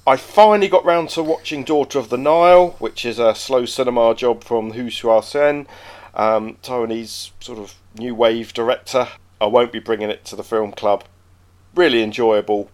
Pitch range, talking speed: 95-120 Hz, 175 wpm